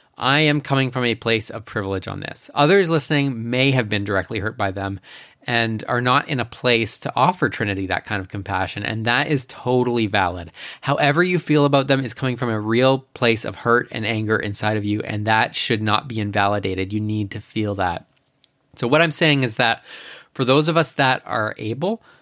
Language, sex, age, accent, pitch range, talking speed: English, male, 20-39, American, 105-135 Hz, 215 wpm